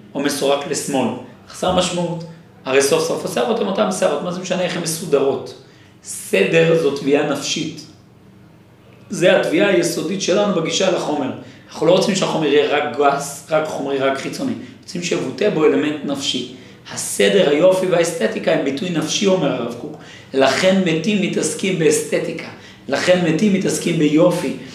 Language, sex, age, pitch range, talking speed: Hebrew, male, 40-59, 140-185 Hz, 150 wpm